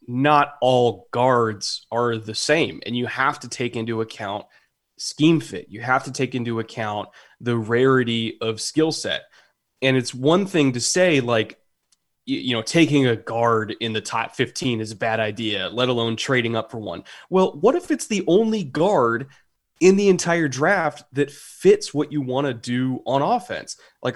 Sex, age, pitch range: male, 20-39, 115-145 Hz